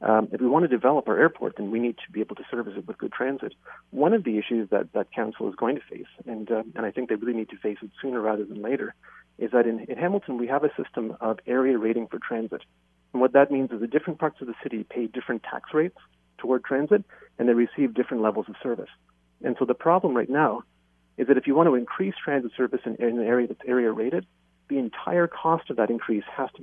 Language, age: English, 40-59